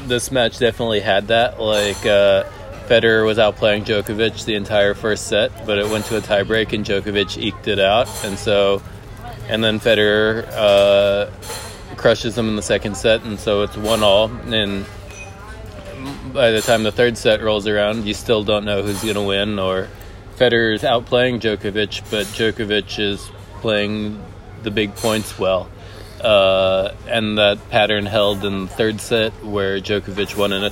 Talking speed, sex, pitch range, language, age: 165 wpm, male, 100-110 Hz, English, 20-39